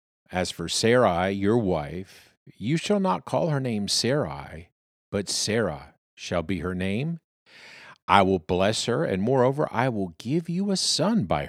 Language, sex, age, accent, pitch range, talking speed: English, male, 50-69, American, 95-150 Hz, 160 wpm